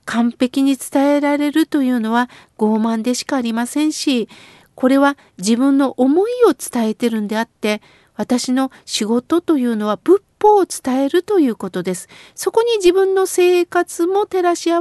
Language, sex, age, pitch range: Japanese, female, 50-69, 255-365 Hz